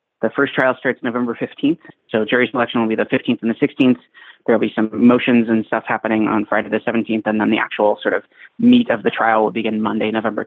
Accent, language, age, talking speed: American, English, 30-49, 235 wpm